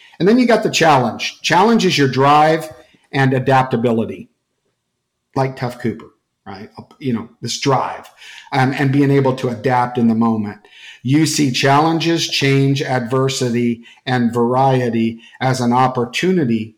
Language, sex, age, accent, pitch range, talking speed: English, male, 50-69, American, 120-145 Hz, 140 wpm